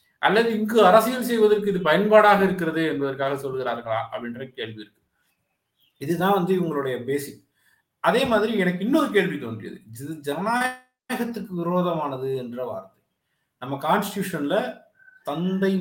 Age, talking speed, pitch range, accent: 50-69, 115 wpm, 135-180 Hz, native